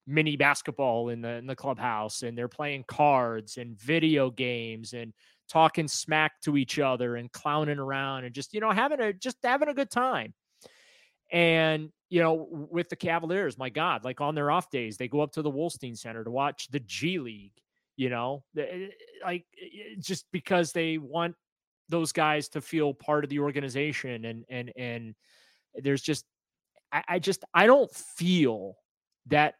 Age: 30-49